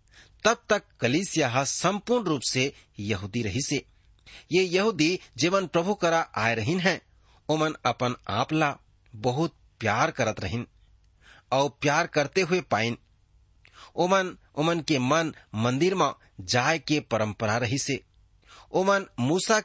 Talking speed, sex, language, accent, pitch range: 125 wpm, male, English, Indian, 110-165 Hz